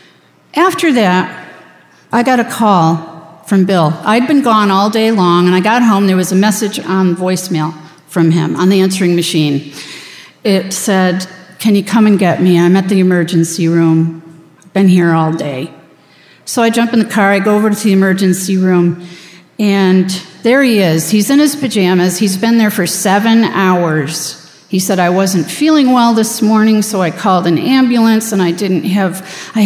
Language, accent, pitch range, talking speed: English, American, 175-220 Hz, 190 wpm